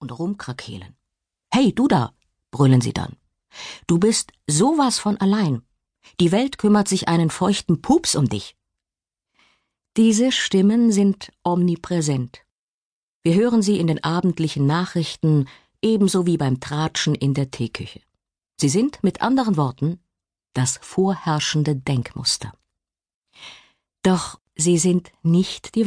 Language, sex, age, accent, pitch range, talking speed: German, female, 50-69, German, 135-200 Hz, 120 wpm